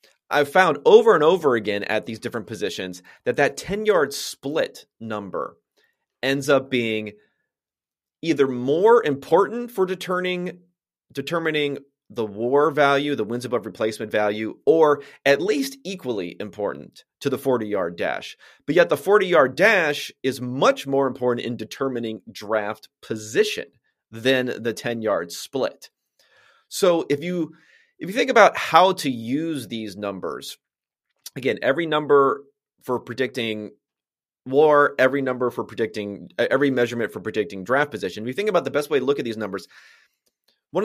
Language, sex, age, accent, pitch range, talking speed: English, male, 30-49, American, 110-150 Hz, 145 wpm